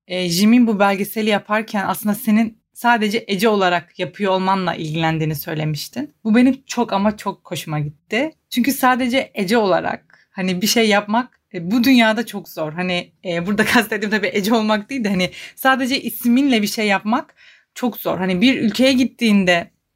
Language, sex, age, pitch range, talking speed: Turkish, female, 30-49, 190-250 Hz, 160 wpm